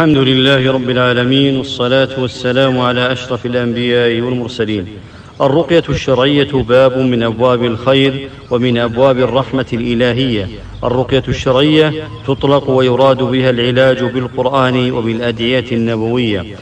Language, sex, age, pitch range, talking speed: English, male, 50-69, 125-135 Hz, 105 wpm